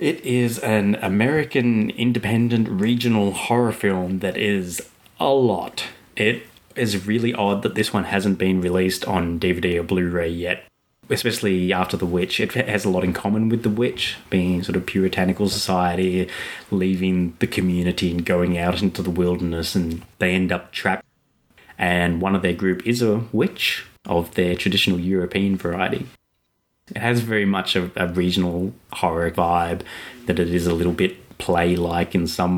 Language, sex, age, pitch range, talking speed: English, male, 20-39, 90-100 Hz, 165 wpm